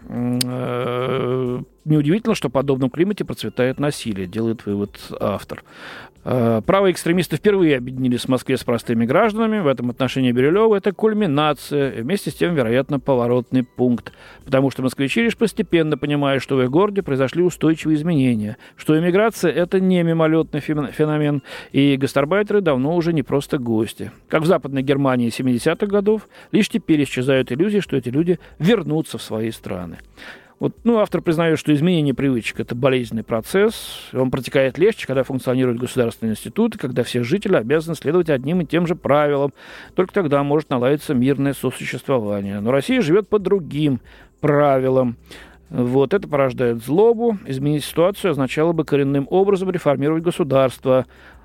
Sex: male